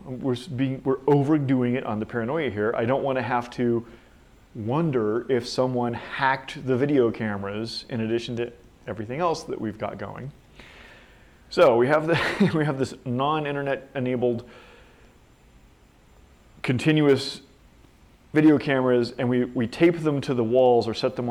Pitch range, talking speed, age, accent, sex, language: 120-140 Hz, 145 wpm, 30-49, American, male, English